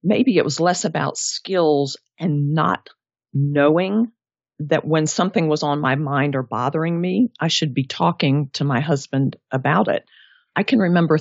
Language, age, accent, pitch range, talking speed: English, 50-69, American, 140-170 Hz, 165 wpm